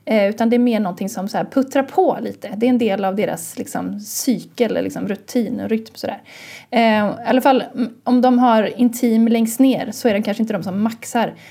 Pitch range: 200-245 Hz